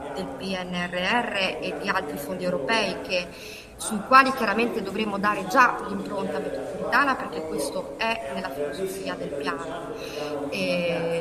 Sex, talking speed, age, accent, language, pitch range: female, 125 wpm, 30-49, native, Italian, 180-225 Hz